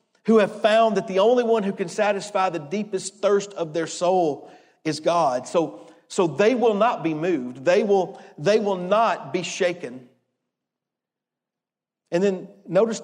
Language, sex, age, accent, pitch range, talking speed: English, male, 40-59, American, 175-215 Hz, 160 wpm